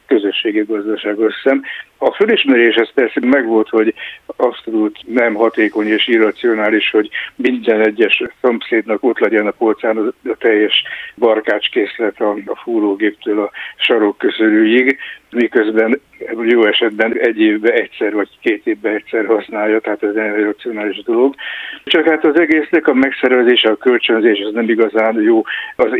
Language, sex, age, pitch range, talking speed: Hungarian, male, 60-79, 110-155 Hz, 135 wpm